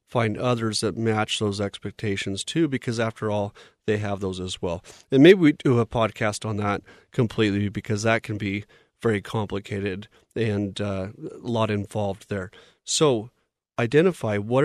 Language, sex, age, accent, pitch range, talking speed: English, male, 40-59, American, 105-125 Hz, 160 wpm